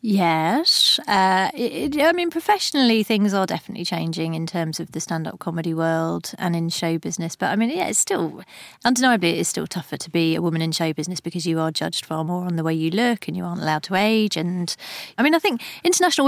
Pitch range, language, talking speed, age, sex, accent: 165-195 Hz, English, 230 wpm, 30-49, female, British